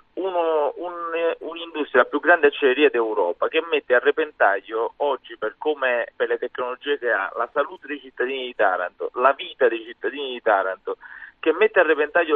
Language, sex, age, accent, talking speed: Italian, male, 30-49, native, 175 wpm